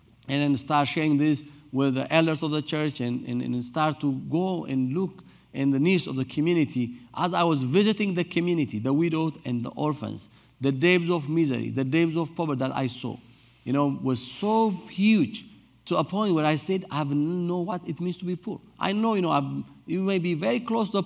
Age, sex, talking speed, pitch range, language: 50-69, male, 220 wpm, 130-165 Hz, English